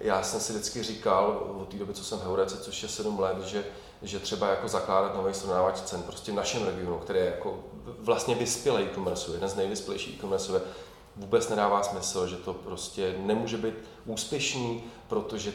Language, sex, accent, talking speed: Czech, male, native, 190 wpm